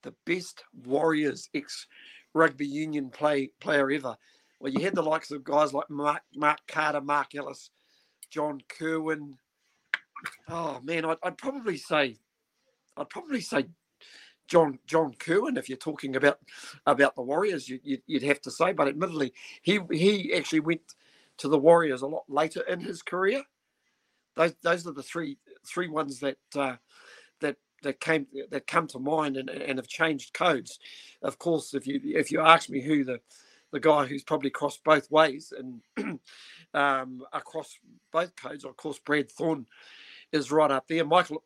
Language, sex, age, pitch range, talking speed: English, male, 50-69, 140-165 Hz, 165 wpm